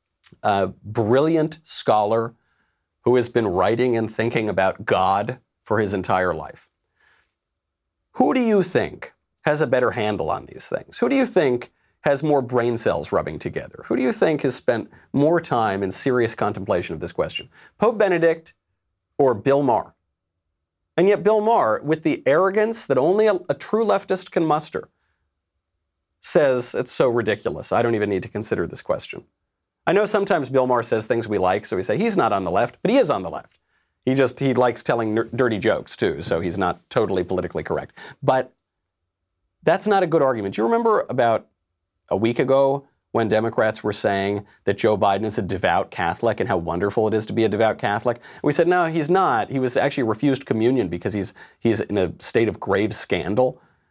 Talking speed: 190 wpm